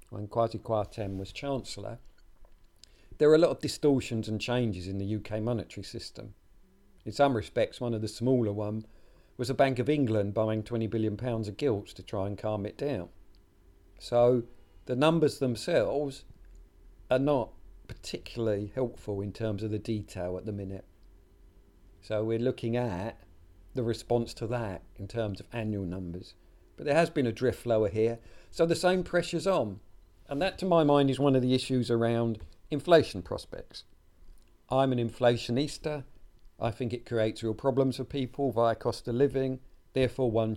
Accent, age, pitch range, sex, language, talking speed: British, 50-69, 100-130 Hz, male, English, 170 wpm